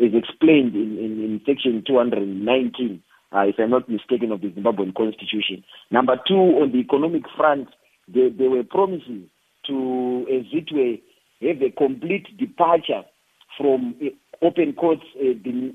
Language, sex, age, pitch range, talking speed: English, male, 40-59, 115-150 Hz, 150 wpm